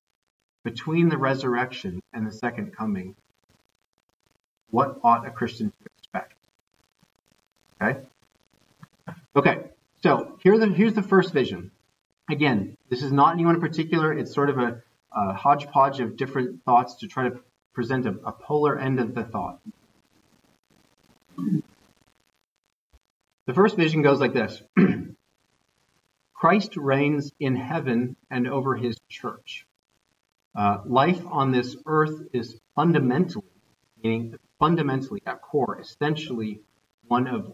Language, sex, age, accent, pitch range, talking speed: English, male, 40-59, American, 115-150 Hz, 120 wpm